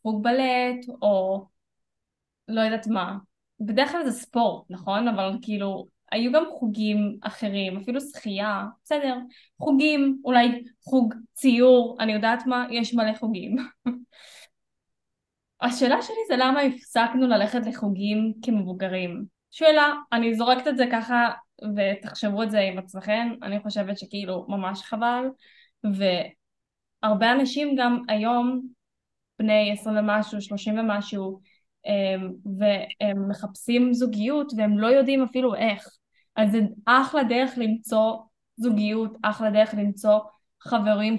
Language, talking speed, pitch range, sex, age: Hebrew, 120 wpm, 210-250 Hz, female, 10-29